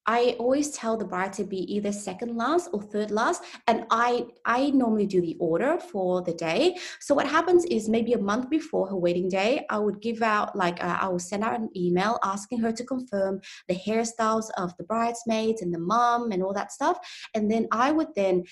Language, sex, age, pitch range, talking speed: English, female, 20-39, 190-255 Hz, 215 wpm